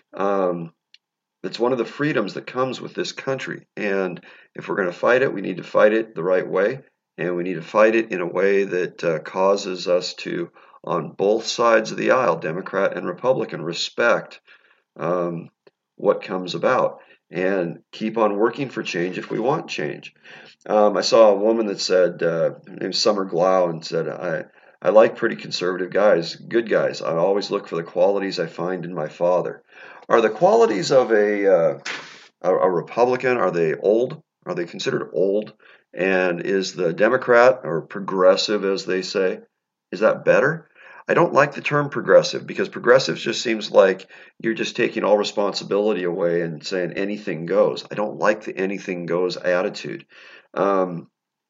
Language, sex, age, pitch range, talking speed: English, male, 40-59, 90-125 Hz, 180 wpm